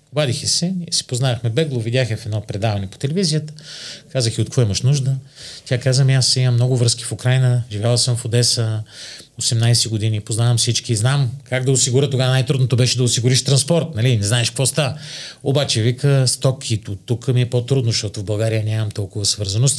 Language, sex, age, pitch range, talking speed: Bulgarian, male, 40-59, 110-145 Hz, 195 wpm